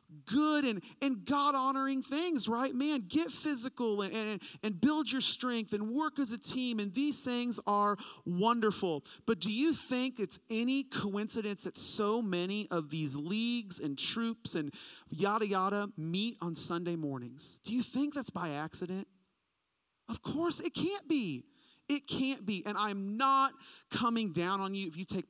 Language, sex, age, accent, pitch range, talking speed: English, male, 40-59, American, 155-230 Hz, 170 wpm